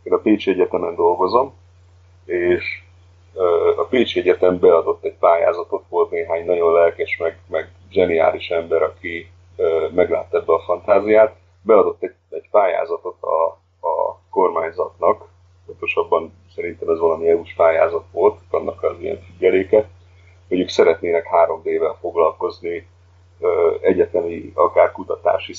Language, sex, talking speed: Hungarian, male, 120 wpm